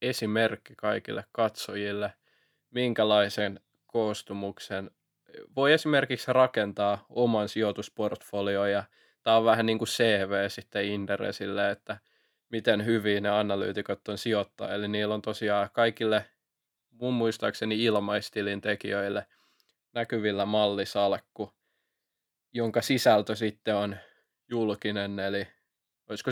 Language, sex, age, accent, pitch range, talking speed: Finnish, male, 20-39, native, 100-110 Hz, 95 wpm